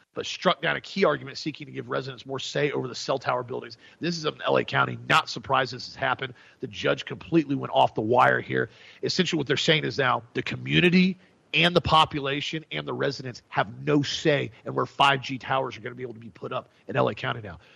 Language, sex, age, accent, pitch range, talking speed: English, male, 40-59, American, 125-160 Hz, 235 wpm